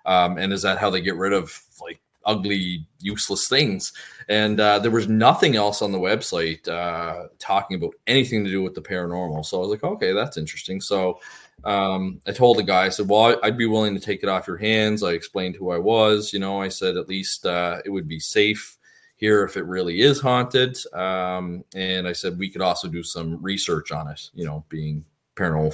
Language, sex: English, male